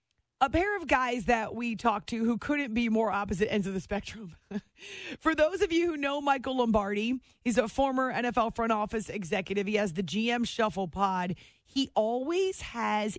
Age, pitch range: 30-49, 210-260 Hz